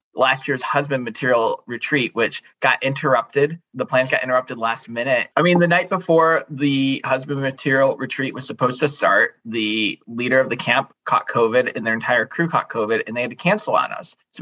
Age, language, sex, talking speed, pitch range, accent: 20-39, English, male, 200 wpm, 125-155 Hz, American